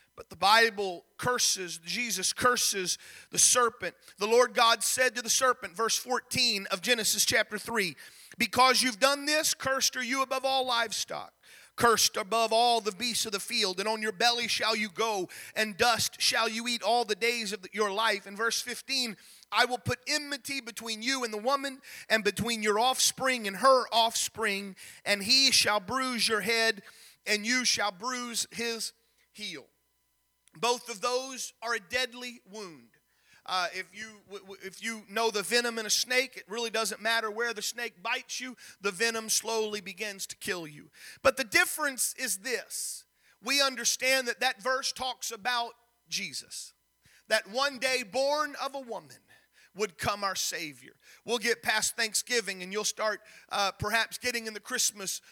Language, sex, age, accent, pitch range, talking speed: English, male, 30-49, American, 210-255 Hz, 170 wpm